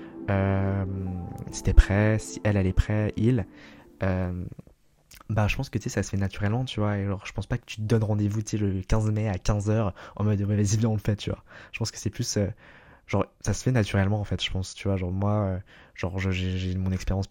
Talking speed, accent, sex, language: 265 wpm, French, male, French